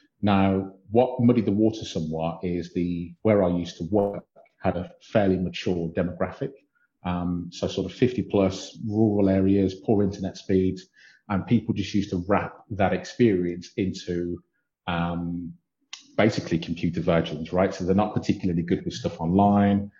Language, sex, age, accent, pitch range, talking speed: English, male, 30-49, British, 85-100 Hz, 155 wpm